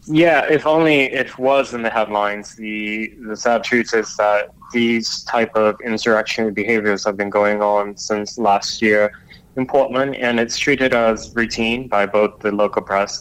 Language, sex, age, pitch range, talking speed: English, male, 20-39, 105-115 Hz, 175 wpm